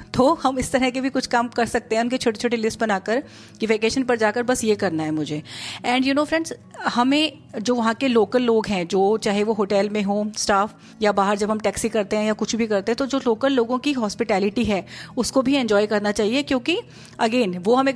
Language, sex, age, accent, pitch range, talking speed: Hindi, female, 30-49, native, 210-255 Hz, 235 wpm